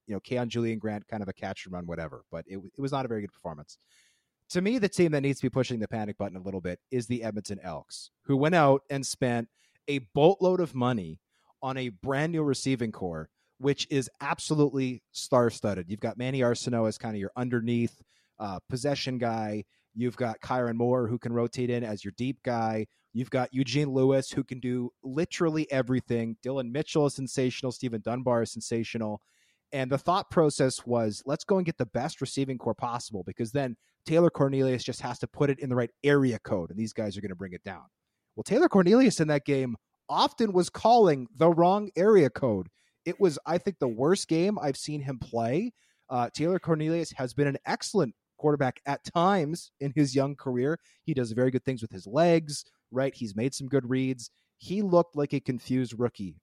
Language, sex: English, male